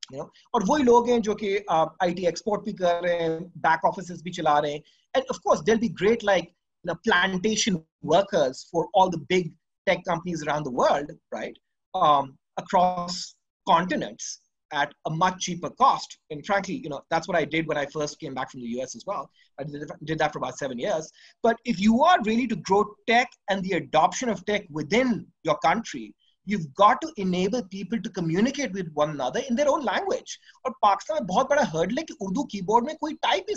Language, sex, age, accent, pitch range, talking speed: English, male, 30-49, Indian, 170-245 Hz, 175 wpm